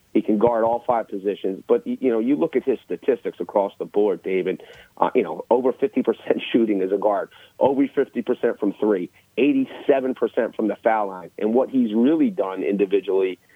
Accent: American